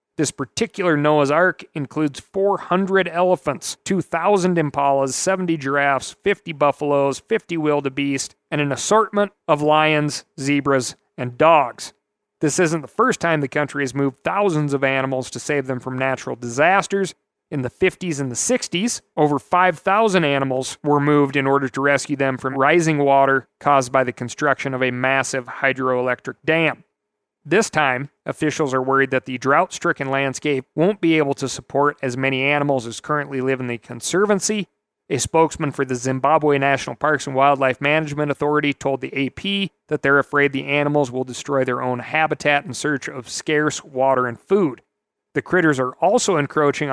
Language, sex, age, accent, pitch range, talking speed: English, male, 40-59, American, 135-165 Hz, 165 wpm